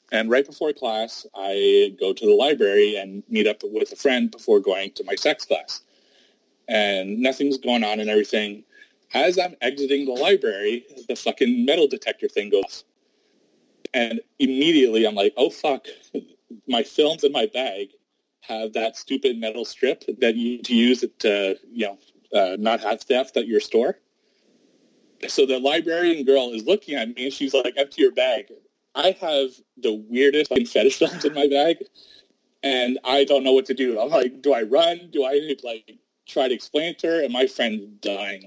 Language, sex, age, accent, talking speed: English, male, 30-49, American, 190 wpm